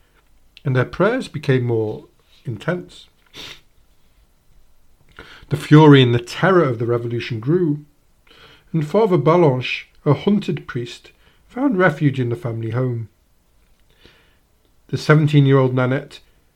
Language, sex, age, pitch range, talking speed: English, male, 50-69, 120-155 Hz, 110 wpm